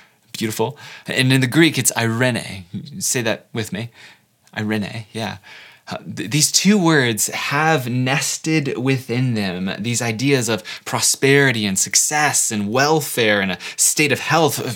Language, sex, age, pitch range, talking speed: English, male, 20-39, 110-150 Hz, 140 wpm